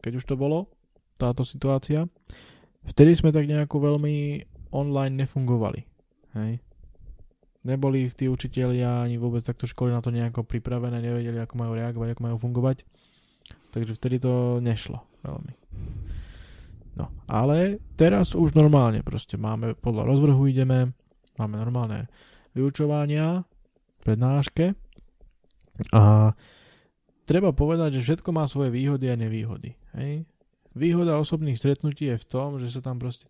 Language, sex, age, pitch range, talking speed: Slovak, male, 20-39, 115-140 Hz, 130 wpm